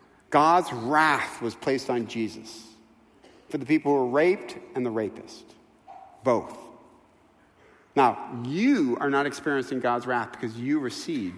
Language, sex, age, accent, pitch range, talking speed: English, male, 50-69, American, 140-225 Hz, 135 wpm